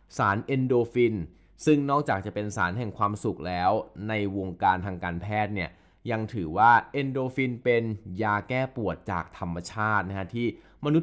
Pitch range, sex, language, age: 90-120 Hz, male, Thai, 20-39